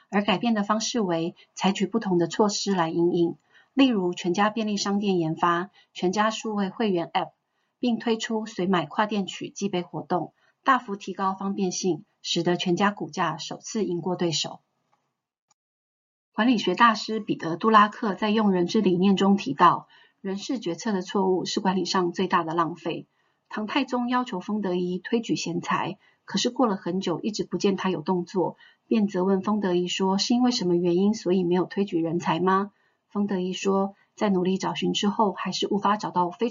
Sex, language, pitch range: female, Chinese, 175-210 Hz